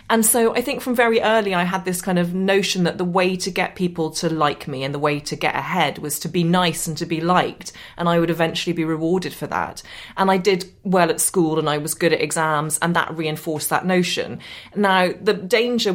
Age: 30-49